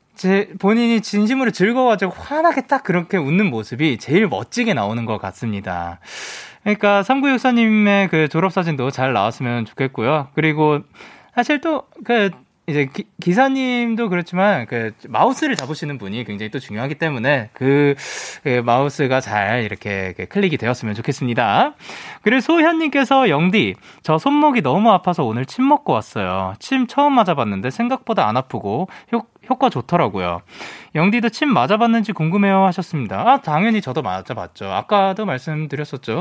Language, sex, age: Korean, male, 20-39